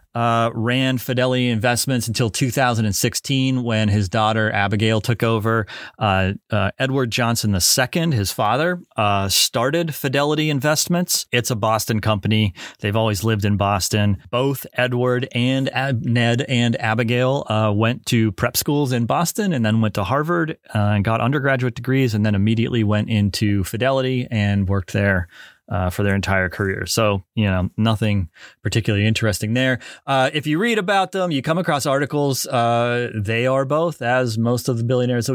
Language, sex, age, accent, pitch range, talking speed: English, male, 30-49, American, 105-135 Hz, 165 wpm